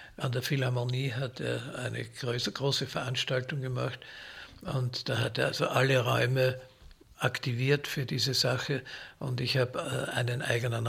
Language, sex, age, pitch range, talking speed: German, male, 60-79, 115-130 Hz, 145 wpm